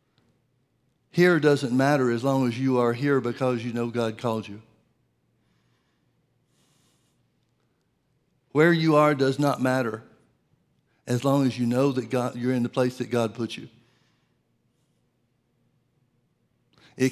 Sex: male